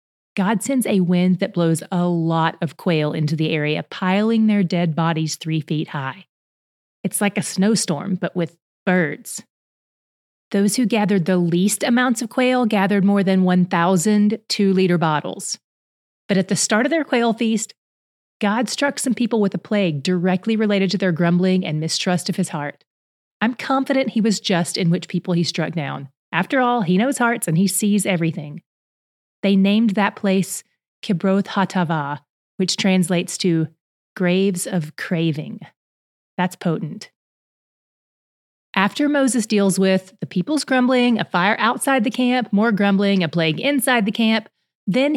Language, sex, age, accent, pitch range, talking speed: English, female, 30-49, American, 170-220 Hz, 160 wpm